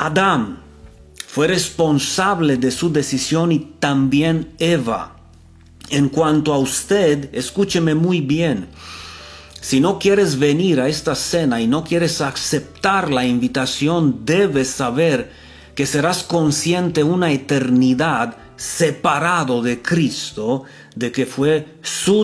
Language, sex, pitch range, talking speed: Romanian, male, 125-170 Hz, 115 wpm